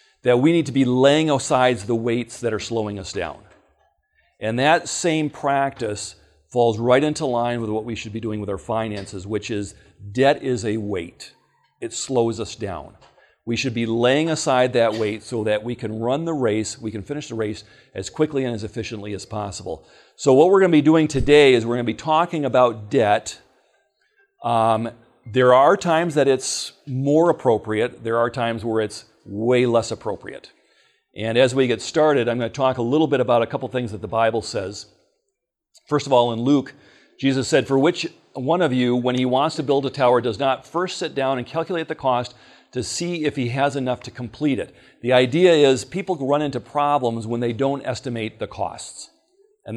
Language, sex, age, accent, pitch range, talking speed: English, male, 40-59, American, 115-140 Hz, 205 wpm